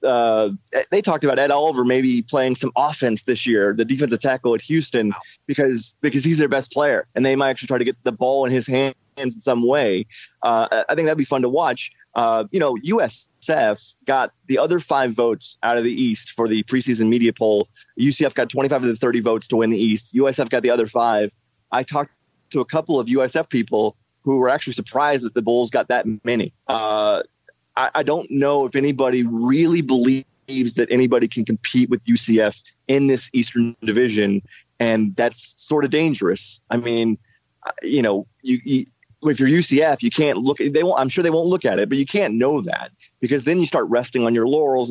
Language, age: English, 20-39